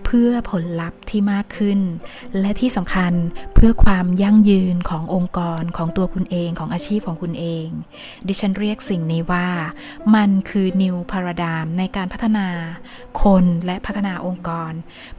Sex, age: female, 20-39